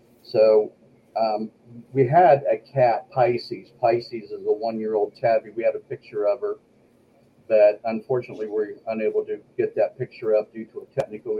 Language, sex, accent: English, male, American